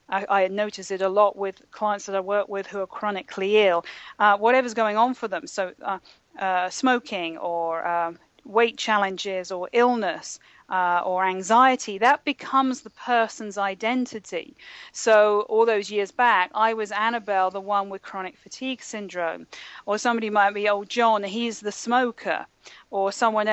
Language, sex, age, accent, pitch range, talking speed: English, female, 40-59, British, 190-230 Hz, 165 wpm